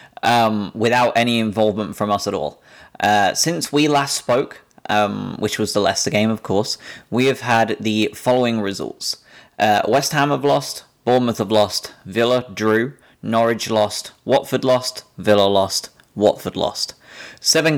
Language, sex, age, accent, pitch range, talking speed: English, male, 20-39, British, 105-120 Hz, 155 wpm